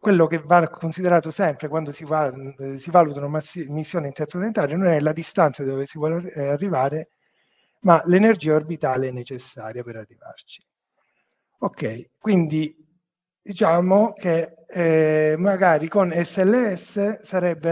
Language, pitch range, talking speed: Italian, 135-180 Hz, 125 wpm